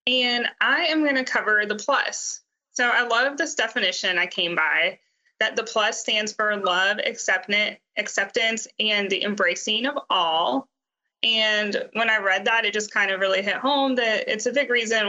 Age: 20-39